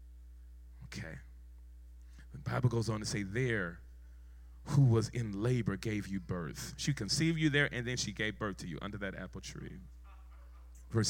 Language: English